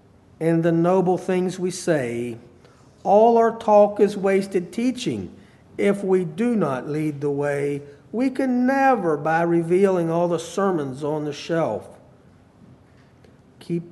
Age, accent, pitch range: 50-69, American, 125-170 Hz